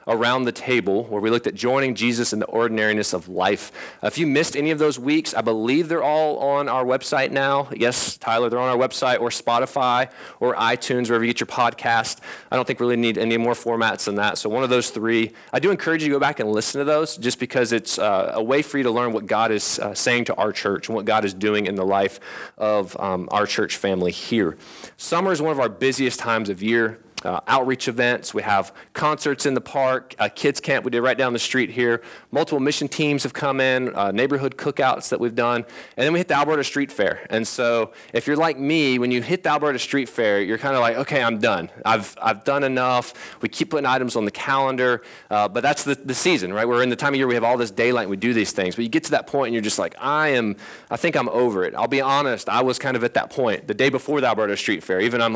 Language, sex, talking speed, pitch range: English, male, 260 wpm, 115-140 Hz